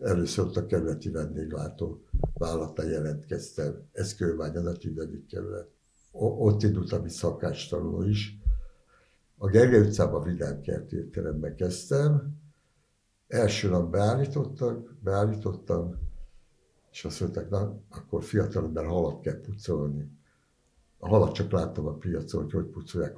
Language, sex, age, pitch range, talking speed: Hungarian, male, 60-79, 80-105 Hz, 110 wpm